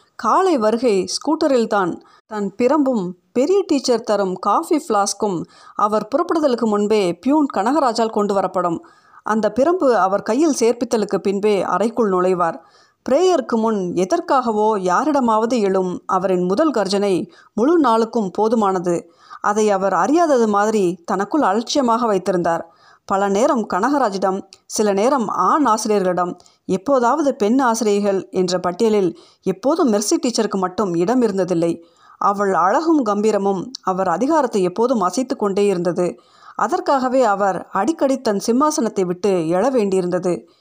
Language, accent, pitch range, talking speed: Tamil, native, 190-260 Hz, 115 wpm